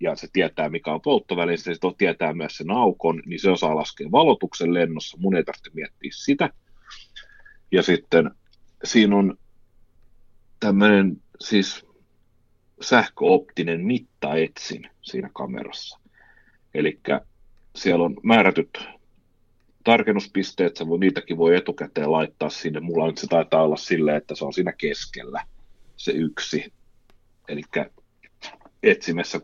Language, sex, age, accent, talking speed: Finnish, male, 30-49, native, 120 wpm